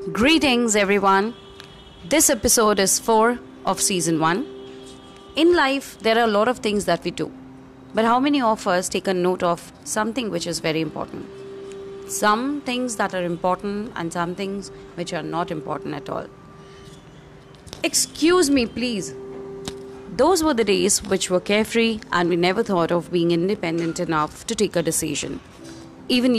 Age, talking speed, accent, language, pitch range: 30-49, 160 wpm, Indian, English, 170-230 Hz